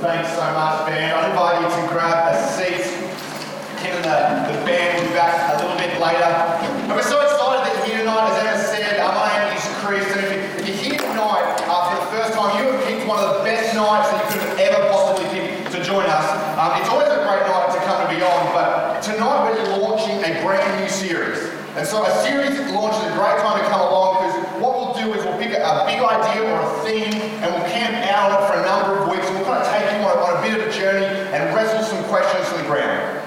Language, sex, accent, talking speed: English, male, Australian, 245 wpm